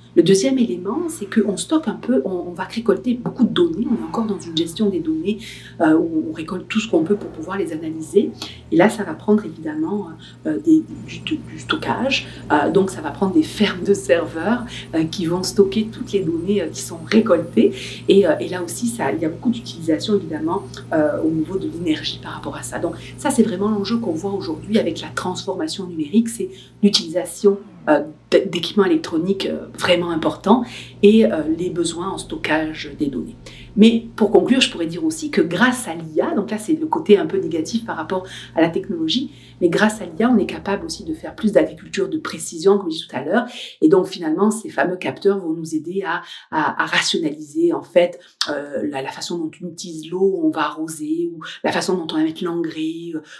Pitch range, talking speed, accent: 165-230 Hz, 215 wpm, French